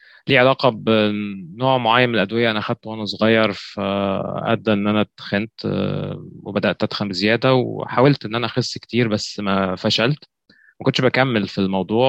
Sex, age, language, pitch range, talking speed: male, 20-39, Arabic, 100-120 Hz, 145 wpm